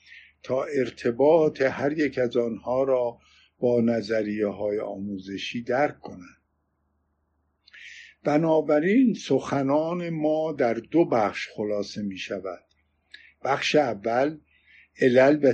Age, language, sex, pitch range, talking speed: 60-79, Persian, male, 95-140 Hz, 100 wpm